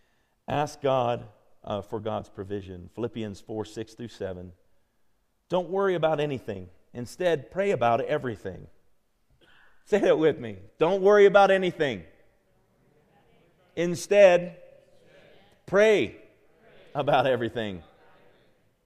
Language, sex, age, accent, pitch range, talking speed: English, male, 40-59, American, 105-165 Hz, 100 wpm